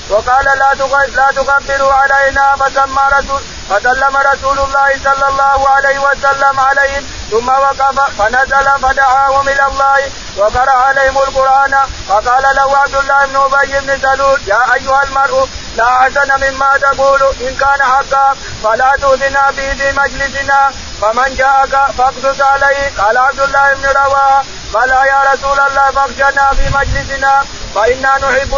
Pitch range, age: 270-275 Hz, 50-69